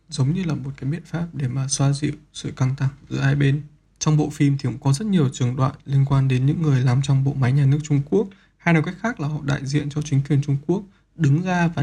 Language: Vietnamese